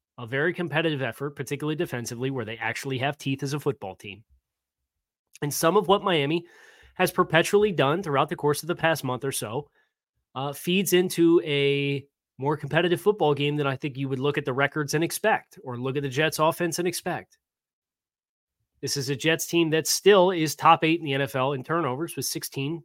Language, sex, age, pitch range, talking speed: English, male, 30-49, 130-160 Hz, 200 wpm